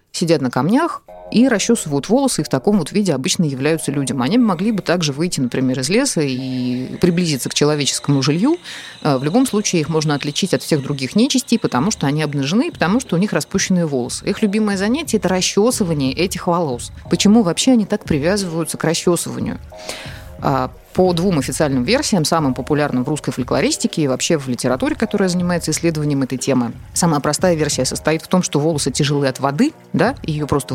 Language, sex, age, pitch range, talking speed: Russian, female, 30-49, 140-195 Hz, 185 wpm